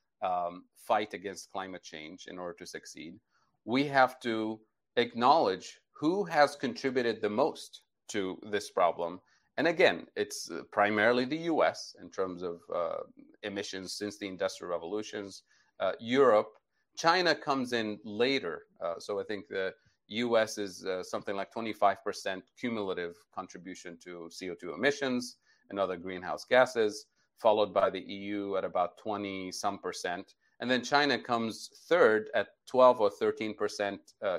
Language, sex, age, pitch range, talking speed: English, male, 30-49, 100-130 Hz, 140 wpm